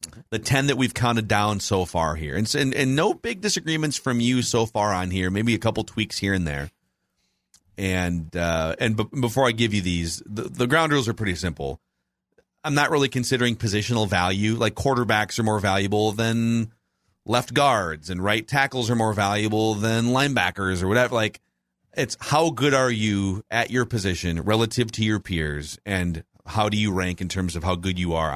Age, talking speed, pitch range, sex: 40-59, 195 wpm, 90-125 Hz, male